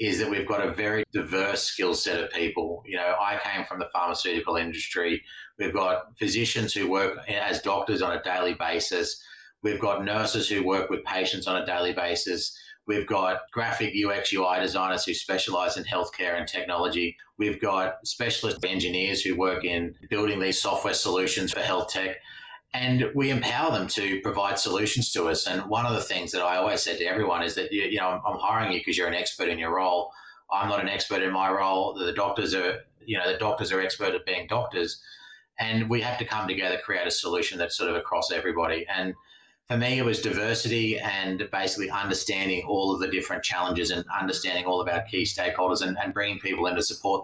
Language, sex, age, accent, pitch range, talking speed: English, male, 30-49, Australian, 95-115 Hz, 205 wpm